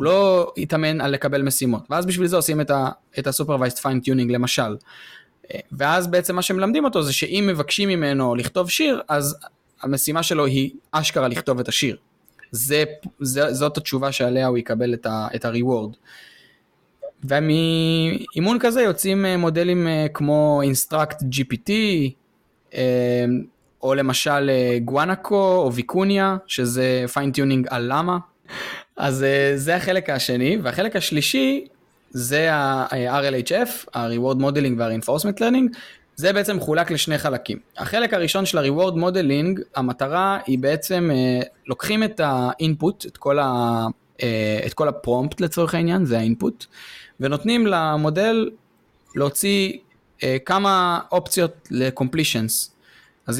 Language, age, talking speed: Hebrew, 20-39, 120 wpm